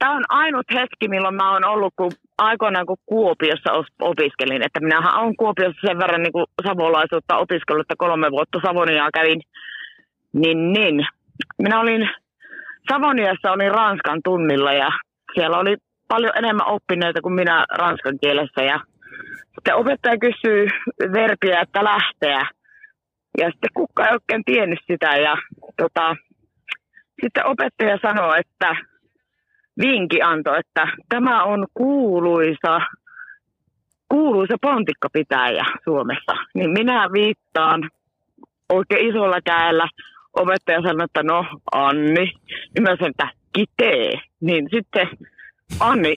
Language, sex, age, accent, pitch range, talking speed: Finnish, female, 30-49, native, 165-225 Hz, 115 wpm